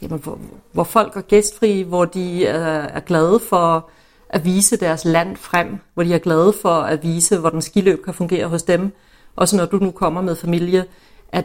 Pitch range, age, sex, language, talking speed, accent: 170-215 Hz, 40-59, female, Danish, 185 wpm, native